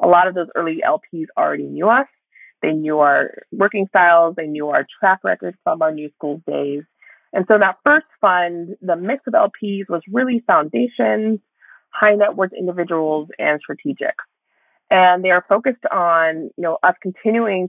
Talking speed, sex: 175 wpm, female